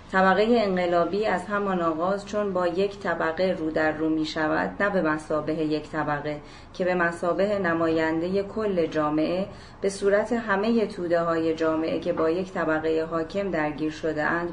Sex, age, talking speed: female, 30-49, 160 wpm